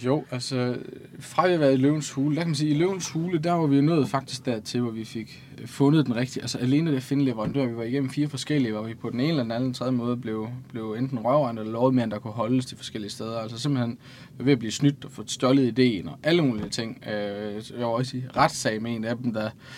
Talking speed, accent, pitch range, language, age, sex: 240 wpm, native, 120-140 Hz, Danish, 20-39, male